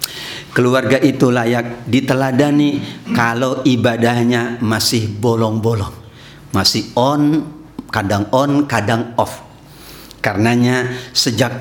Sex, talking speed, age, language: male, 85 wpm, 50-69, Indonesian